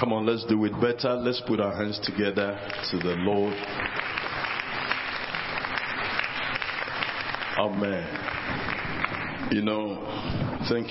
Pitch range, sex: 95-130 Hz, male